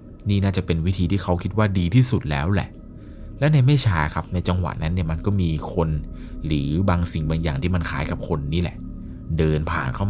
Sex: male